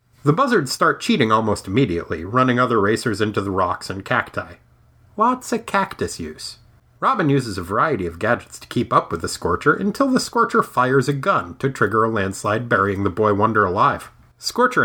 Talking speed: 185 wpm